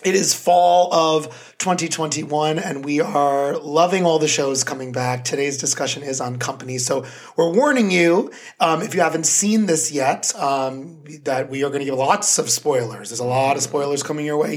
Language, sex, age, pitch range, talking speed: English, male, 30-49, 140-180 Hz, 200 wpm